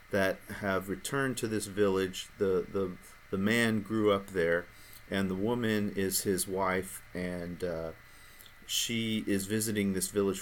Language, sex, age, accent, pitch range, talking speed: English, male, 40-59, American, 95-105 Hz, 150 wpm